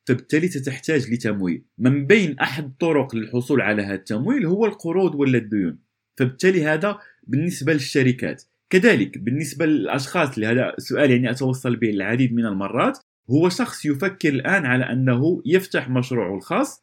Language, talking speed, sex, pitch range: Arabic, 140 wpm, male, 125-165 Hz